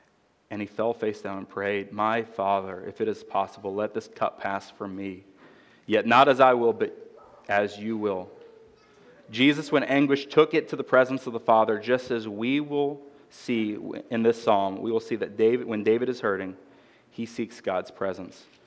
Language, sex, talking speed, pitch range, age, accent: English, male, 195 wpm, 100-120 Hz, 30-49, American